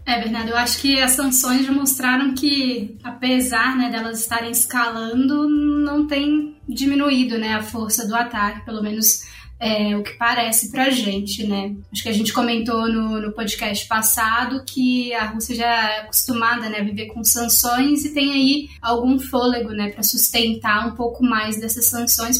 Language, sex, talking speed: Portuguese, female, 175 wpm